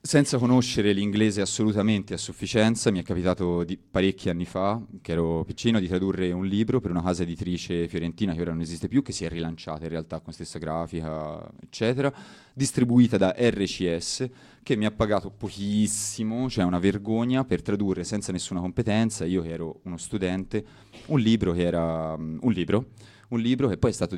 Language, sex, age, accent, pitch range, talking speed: Italian, male, 30-49, native, 90-120 Hz, 180 wpm